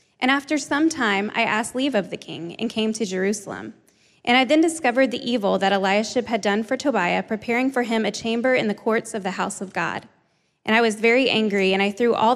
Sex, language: female, English